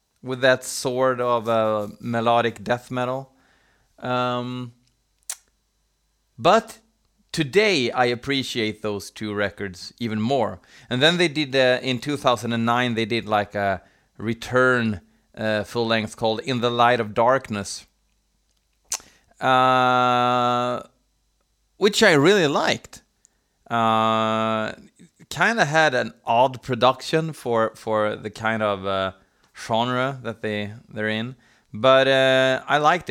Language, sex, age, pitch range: Swedish, male, 30-49, 110-135 Hz